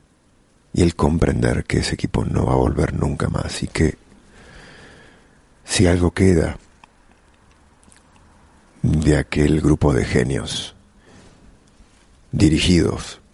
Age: 40-59